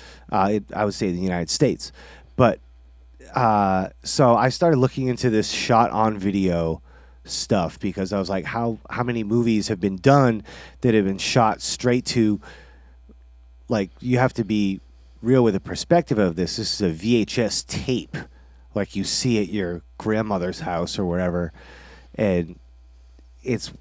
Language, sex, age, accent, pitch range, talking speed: English, male, 30-49, American, 90-120 Hz, 160 wpm